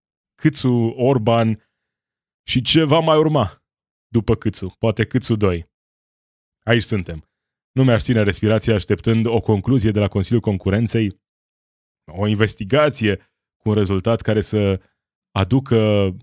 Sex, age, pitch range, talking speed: male, 20-39, 100-120 Hz, 120 wpm